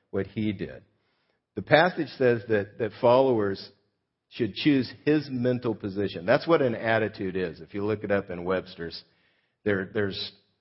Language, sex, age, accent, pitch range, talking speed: English, male, 50-69, American, 100-125 Hz, 160 wpm